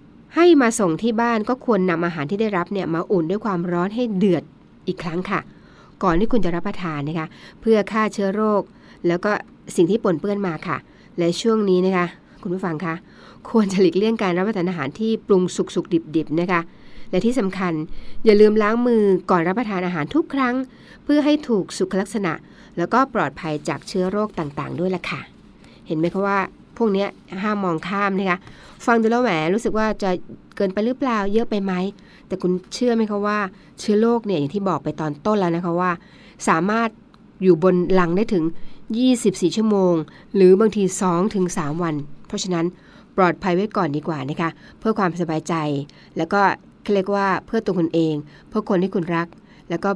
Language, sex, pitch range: Thai, female, 170-215 Hz